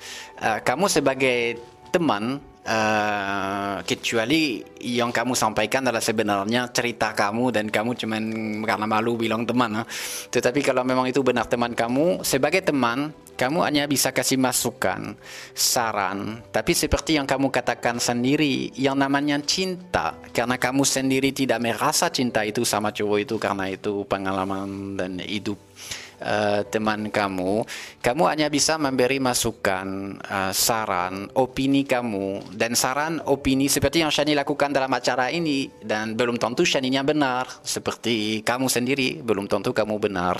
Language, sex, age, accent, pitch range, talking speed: Indonesian, male, 20-39, native, 105-135 Hz, 135 wpm